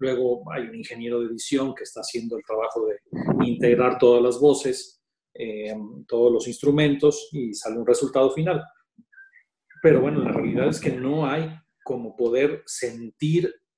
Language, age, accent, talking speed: Spanish, 40-59, Mexican, 155 wpm